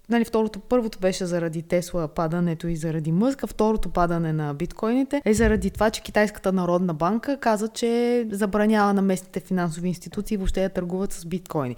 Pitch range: 175-215 Hz